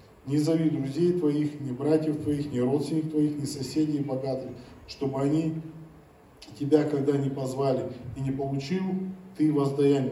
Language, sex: Russian, male